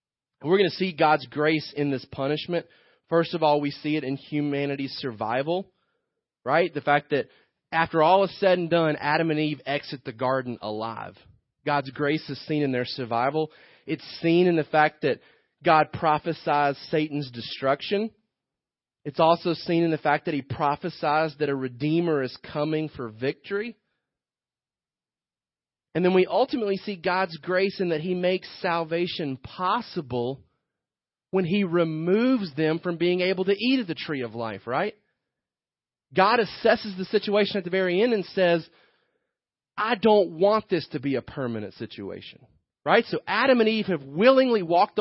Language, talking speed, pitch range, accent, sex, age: English, 165 wpm, 145-190 Hz, American, male, 30-49